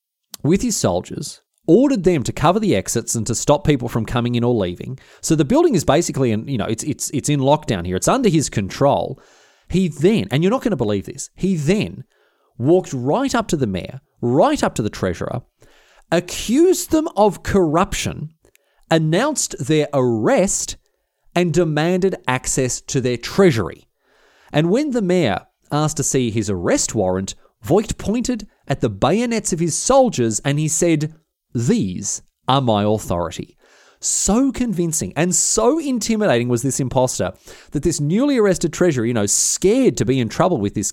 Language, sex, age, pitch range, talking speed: English, male, 30-49, 125-195 Hz, 175 wpm